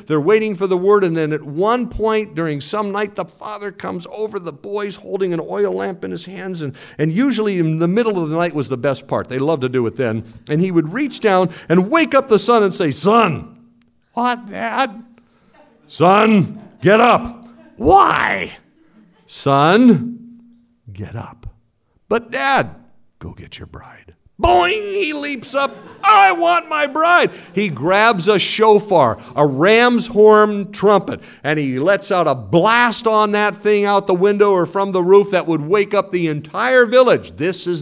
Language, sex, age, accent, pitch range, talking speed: English, male, 50-69, American, 170-225 Hz, 180 wpm